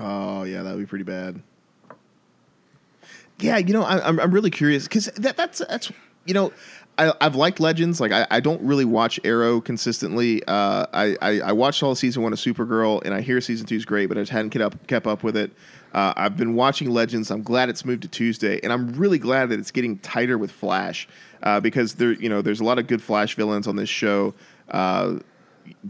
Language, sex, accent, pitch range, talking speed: English, male, American, 110-145 Hz, 225 wpm